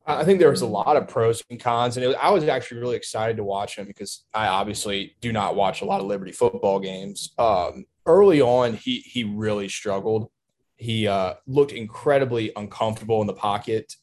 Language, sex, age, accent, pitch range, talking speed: English, male, 20-39, American, 105-135 Hz, 205 wpm